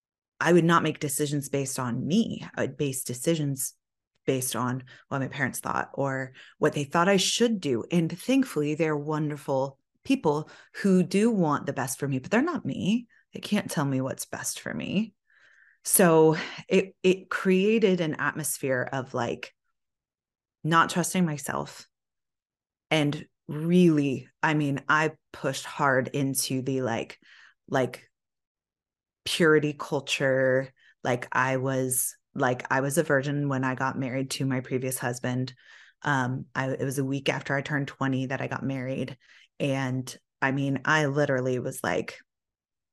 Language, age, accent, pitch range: English, 20-39, American, 130-165 Hz